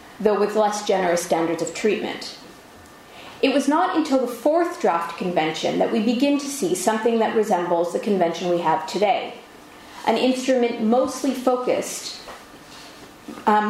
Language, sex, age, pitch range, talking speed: English, female, 30-49, 185-250 Hz, 145 wpm